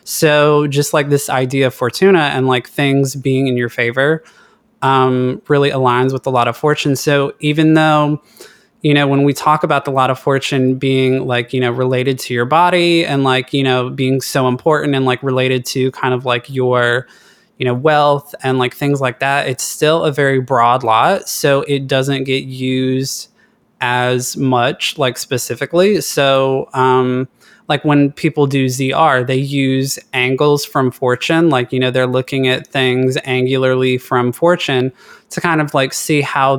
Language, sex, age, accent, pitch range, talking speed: English, male, 20-39, American, 130-145 Hz, 180 wpm